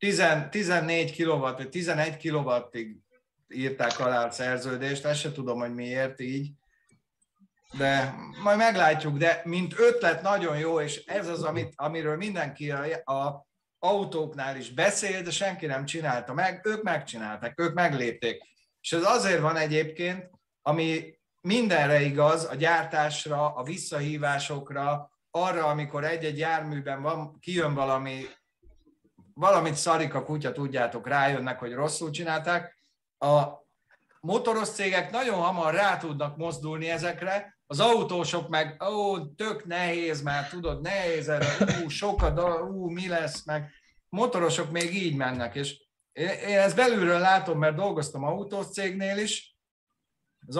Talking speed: 130 wpm